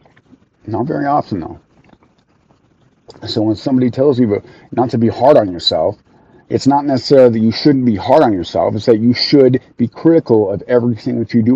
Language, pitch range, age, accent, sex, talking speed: English, 105-125 Hz, 40-59, American, male, 185 wpm